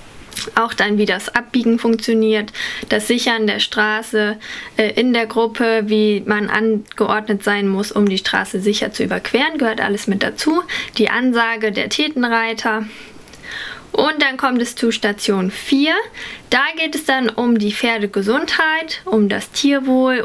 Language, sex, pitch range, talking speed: German, female, 210-245 Hz, 150 wpm